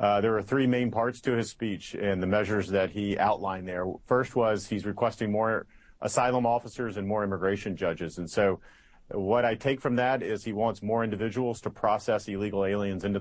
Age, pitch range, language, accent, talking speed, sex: 40-59, 100-120 Hz, English, American, 200 wpm, male